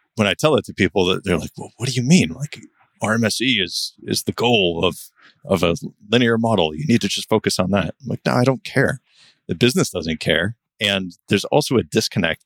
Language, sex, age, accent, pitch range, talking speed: English, male, 30-49, American, 90-115 Hz, 225 wpm